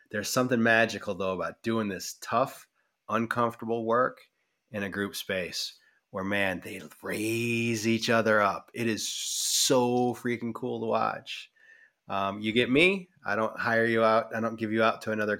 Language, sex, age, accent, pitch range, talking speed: English, male, 20-39, American, 105-120 Hz, 170 wpm